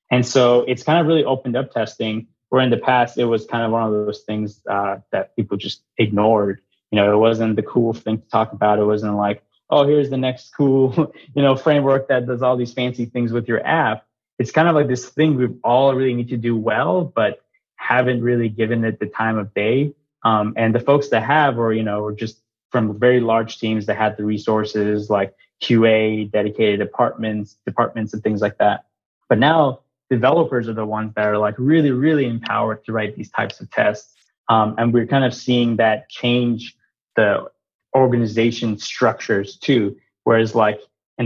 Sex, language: male, English